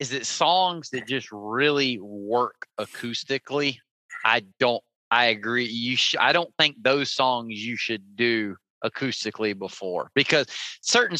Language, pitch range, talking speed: English, 115-150 Hz, 140 wpm